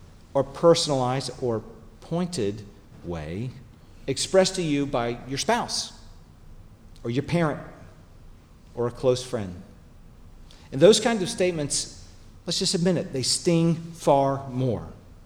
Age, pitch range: 40-59, 95-135 Hz